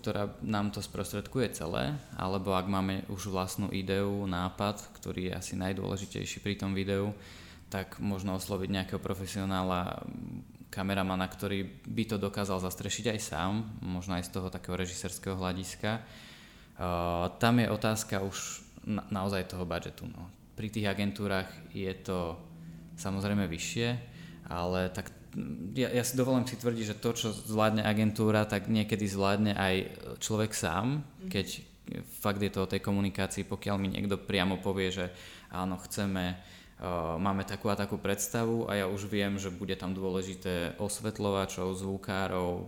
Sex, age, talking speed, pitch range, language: male, 20-39, 150 wpm, 95-105 Hz, Slovak